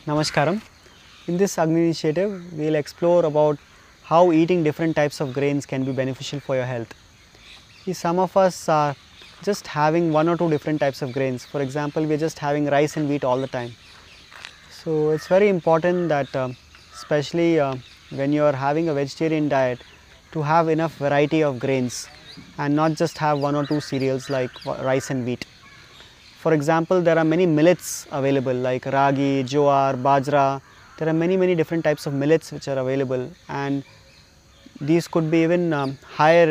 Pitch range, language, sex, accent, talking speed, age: 135-160 Hz, English, male, Indian, 180 wpm, 20-39